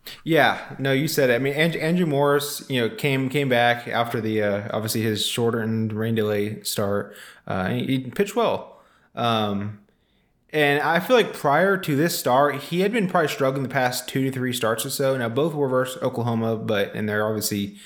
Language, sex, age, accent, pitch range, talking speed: English, male, 20-39, American, 105-135 Hz, 200 wpm